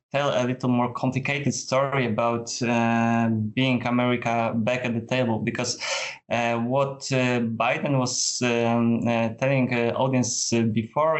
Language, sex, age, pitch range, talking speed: Polish, male, 20-39, 115-125 Hz, 150 wpm